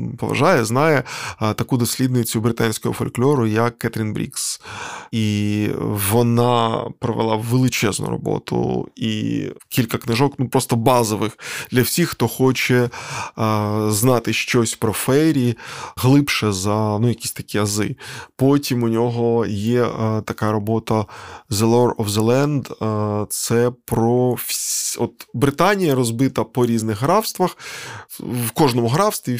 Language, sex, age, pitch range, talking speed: Ukrainian, male, 20-39, 115-145 Hz, 115 wpm